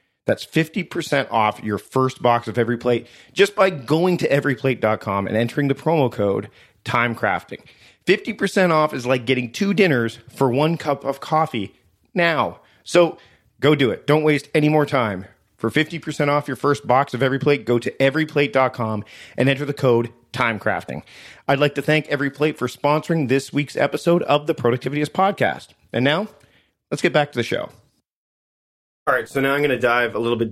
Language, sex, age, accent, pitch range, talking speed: English, male, 40-59, American, 110-145 Hz, 175 wpm